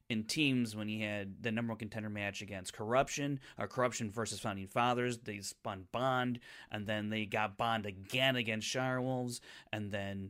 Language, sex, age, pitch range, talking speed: English, male, 30-49, 110-140 Hz, 180 wpm